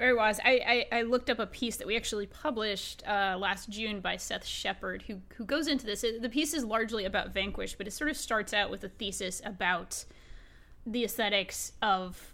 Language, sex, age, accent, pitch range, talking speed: English, female, 20-39, American, 200-255 Hz, 210 wpm